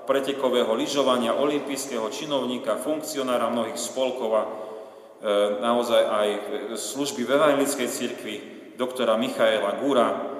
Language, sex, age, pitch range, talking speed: Slovak, male, 30-49, 110-135 Hz, 90 wpm